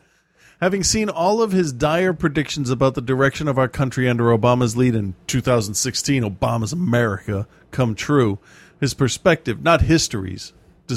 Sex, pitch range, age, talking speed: male, 110-140 Hz, 40-59, 140 wpm